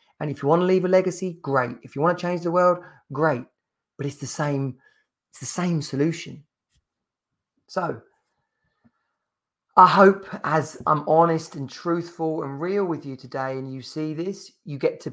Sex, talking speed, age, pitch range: male, 180 wpm, 30-49, 125-155 Hz